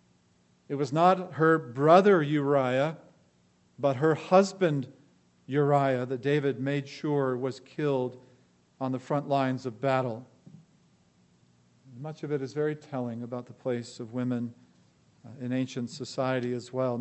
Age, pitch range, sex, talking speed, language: 50-69, 125-150 Hz, male, 135 wpm, English